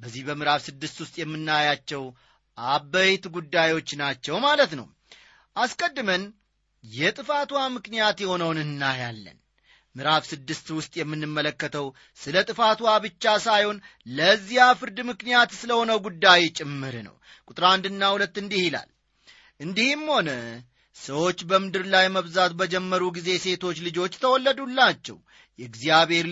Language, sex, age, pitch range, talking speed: Amharic, male, 30-49, 150-235 Hz, 110 wpm